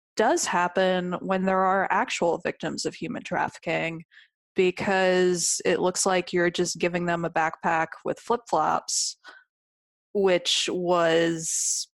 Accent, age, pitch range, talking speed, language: American, 20-39, 170-205 Hz, 120 wpm, English